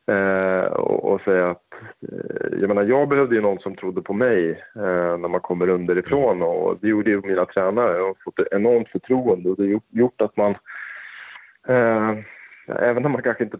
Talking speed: 195 wpm